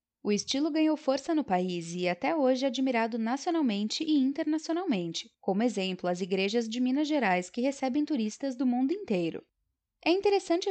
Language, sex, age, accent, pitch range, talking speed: Portuguese, female, 10-29, Brazilian, 200-290 Hz, 160 wpm